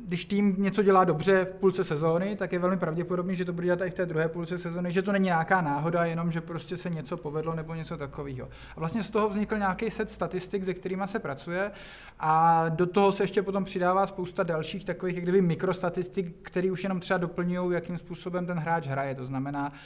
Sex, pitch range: male, 160-180 Hz